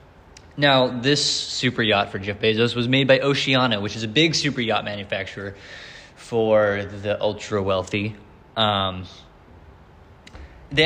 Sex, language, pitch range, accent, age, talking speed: male, English, 95-130 Hz, American, 20-39, 135 wpm